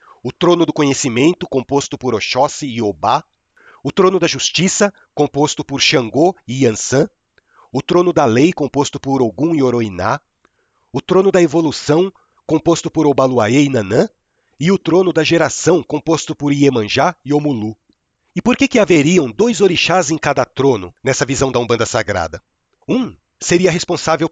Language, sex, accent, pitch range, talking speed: Portuguese, male, Brazilian, 125-165 Hz, 160 wpm